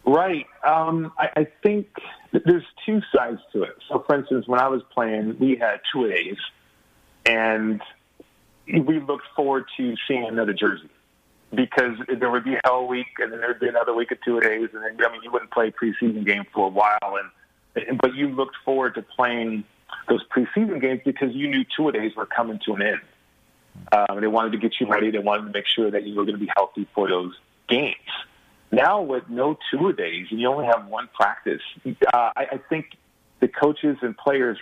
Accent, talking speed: American, 210 wpm